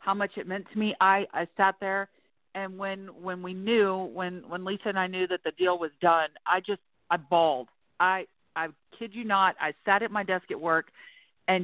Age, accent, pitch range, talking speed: 50-69, American, 180-220 Hz, 220 wpm